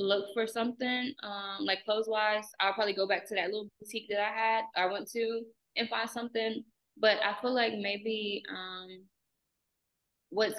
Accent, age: American, 10-29